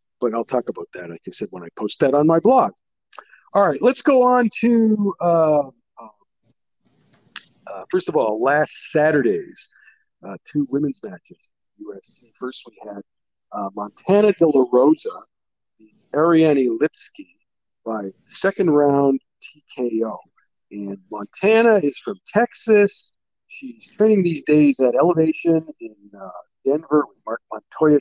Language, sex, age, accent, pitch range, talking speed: English, male, 50-69, American, 125-205 Hz, 145 wpm